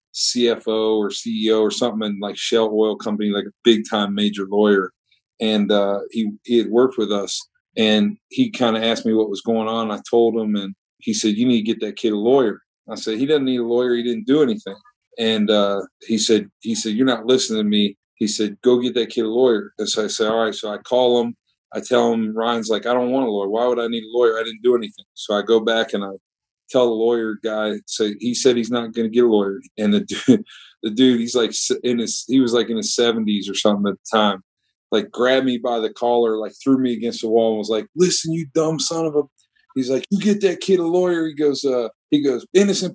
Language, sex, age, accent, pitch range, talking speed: English, male, 40-59, American, 110-130 Hz, 250 wpm